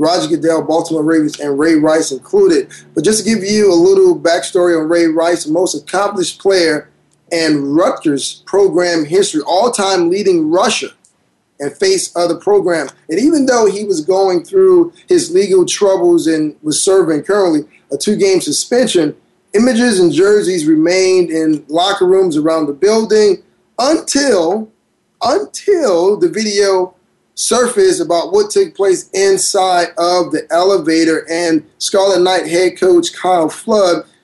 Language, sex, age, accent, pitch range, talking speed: English, male, 20-39, American, 170-250 Hz, 145 wpm